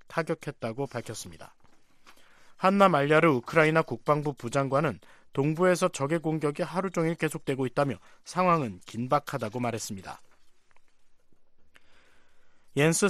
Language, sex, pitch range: Korean, male, 130-170 Hz